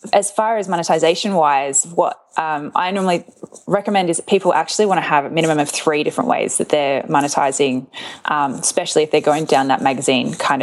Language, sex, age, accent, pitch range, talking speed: English, female, 20-39, Australian, 150-185 Hz, 200 wpm